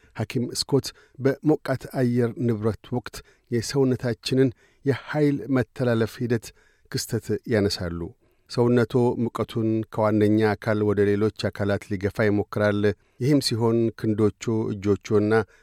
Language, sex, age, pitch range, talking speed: Amharic, male, 50-69, 105-125 Hz, 95 wpm